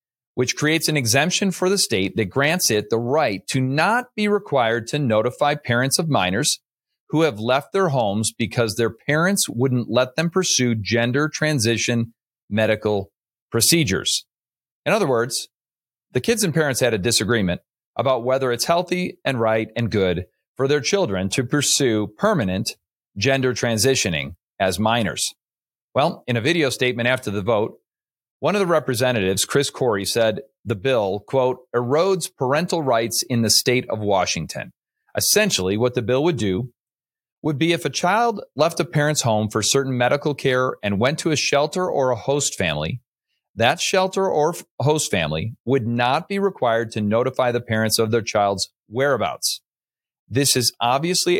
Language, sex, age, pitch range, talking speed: English, male, 40-59, 110-150 Hz, 160 wpm